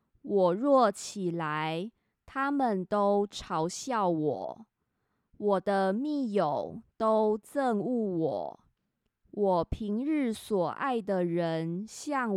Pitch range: 180-230 Hz